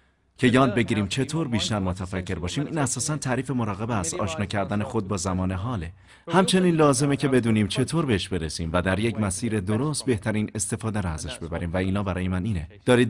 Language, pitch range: Persian, 95-135 Hz